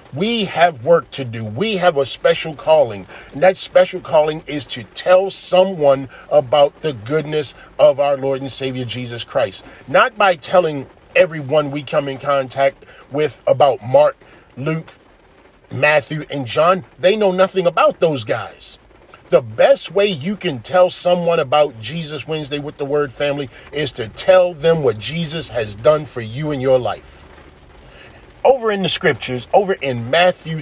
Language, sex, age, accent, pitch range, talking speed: English, male, 40-59, American, 135-185 Hz, 165 wpm